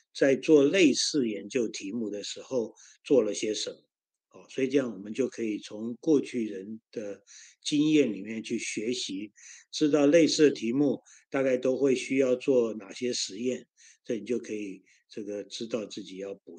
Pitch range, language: 110-150 Hz, Chinese